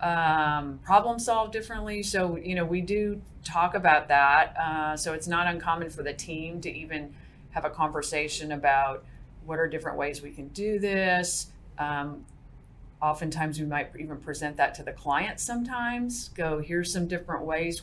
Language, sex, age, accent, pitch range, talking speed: English, female, 40-59, American, 150-170 Hz, 170 wpm